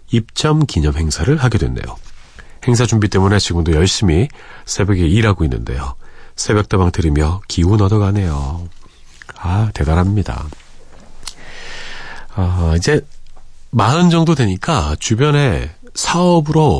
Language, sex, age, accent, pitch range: Korean, male, 40-59, native, 80-120 Hz